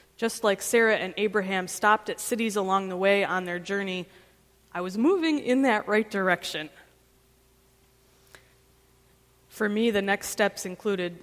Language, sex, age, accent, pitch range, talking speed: English, female, 20-39, American, 180-220 Hz, 145 wpm